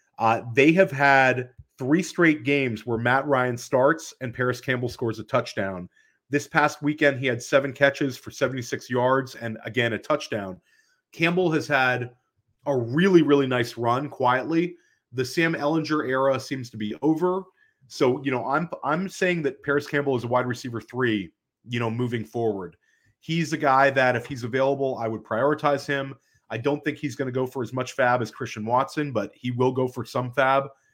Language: English